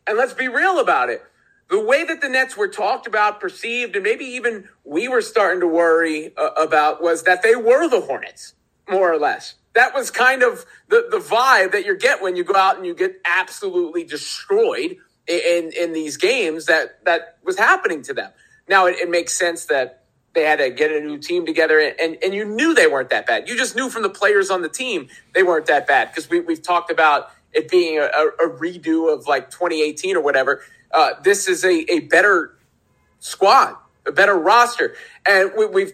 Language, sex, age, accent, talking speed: English, male, 30-49, American, 210 wpm